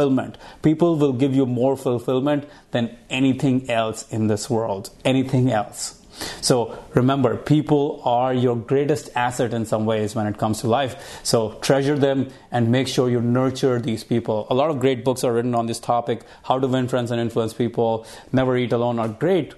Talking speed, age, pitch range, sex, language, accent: 185 wpm, 30-49, 120-145 Hz, male, English, Indian